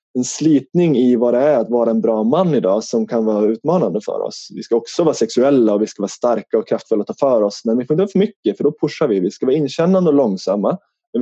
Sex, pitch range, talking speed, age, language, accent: male, 115-150 Hz, 280 wpm, 20-39, Swedish, native